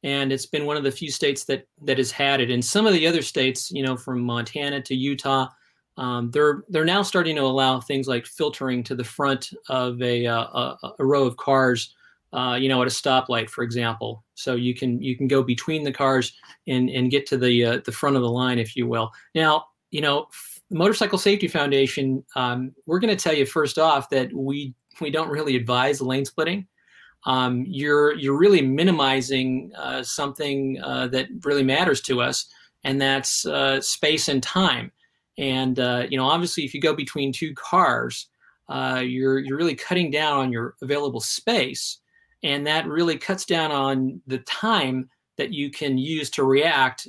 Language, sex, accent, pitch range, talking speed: English, male, American, 130-155 Hz, 195 wpm